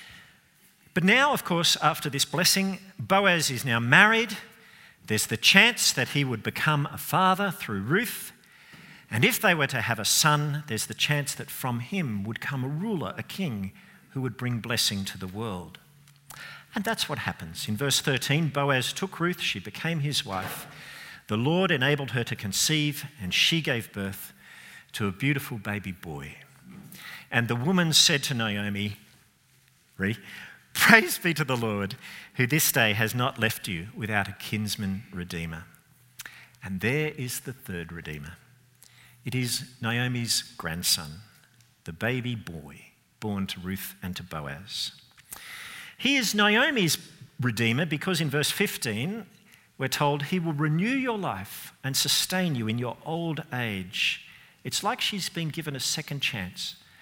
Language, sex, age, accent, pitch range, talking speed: English, male, 50-69, Australian, 110-160 Hz, 155 wpm